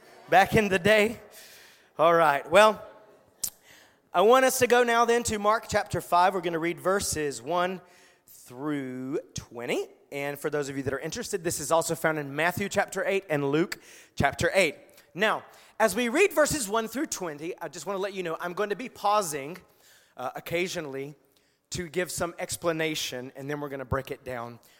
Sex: male